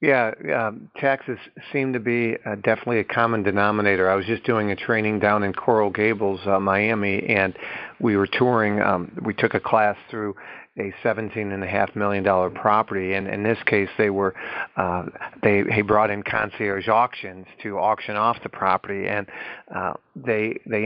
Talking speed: 170 wpm